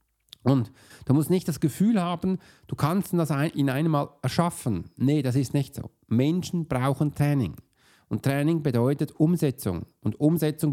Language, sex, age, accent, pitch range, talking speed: German, male, 40-59, German, 115-145 Hz, 155 wpm